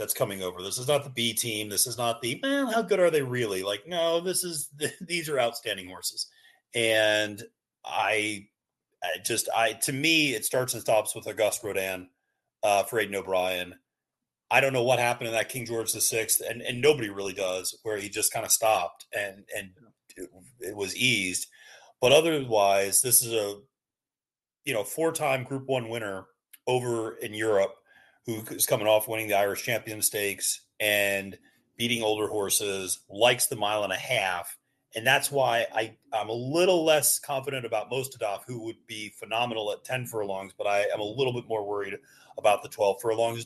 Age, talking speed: 30-49, 190 wpm